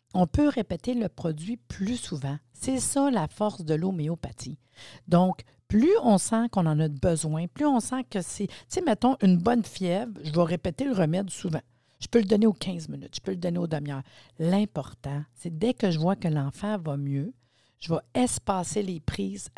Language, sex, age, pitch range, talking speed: French, female, 50-69, 155-210 Hz, 200 wpm